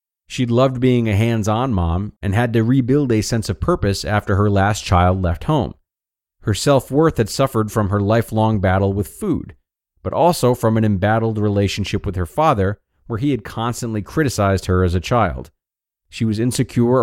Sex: male